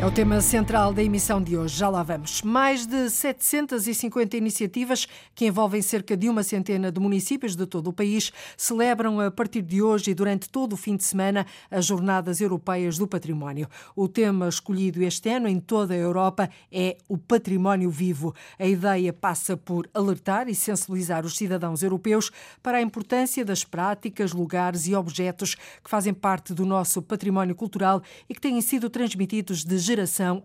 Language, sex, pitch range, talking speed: Portuguese, female, 180-215 Hz, 175 wpm